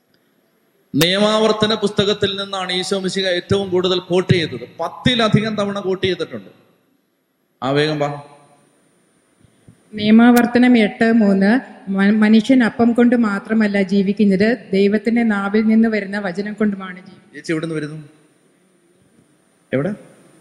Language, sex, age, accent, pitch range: Malayalam, male, 30-49, native, 175-210 Hz